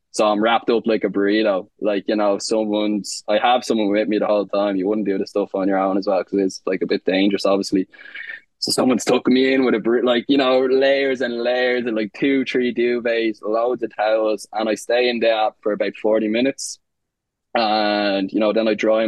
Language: English